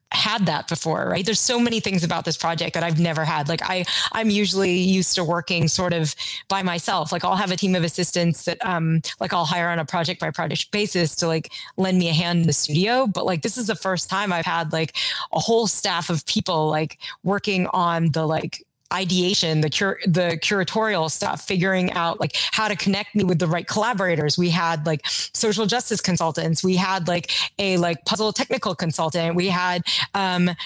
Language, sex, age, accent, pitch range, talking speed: English, female, 30-49, American, 165-200 Hz, 210 wpm